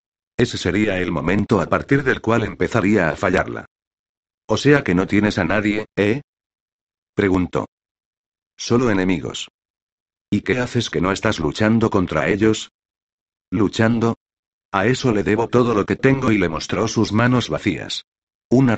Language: Spanish